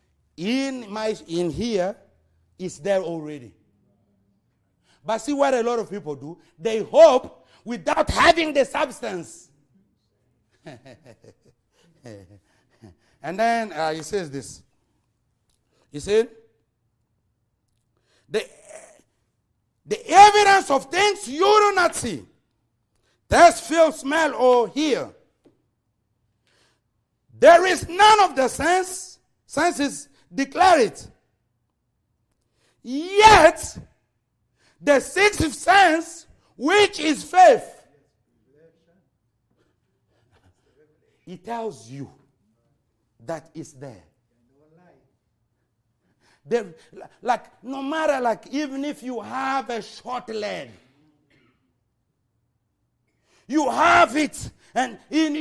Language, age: English, 60-79